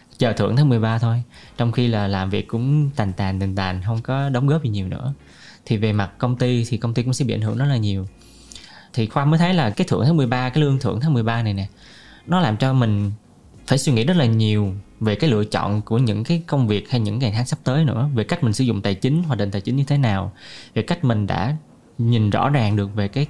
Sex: male